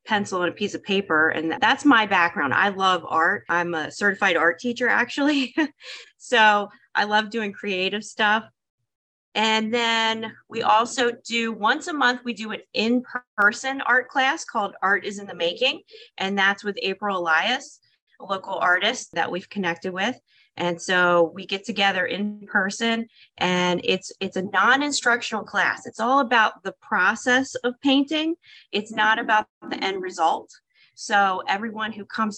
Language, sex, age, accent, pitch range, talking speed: English, female, 30-49, American, 185-240 Hz, 160 wpm